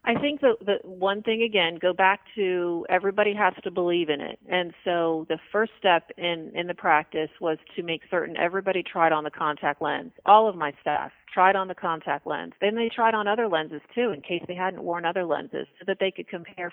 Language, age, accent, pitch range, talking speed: English, 40-59, American, 175-220 Hz, 225 wpm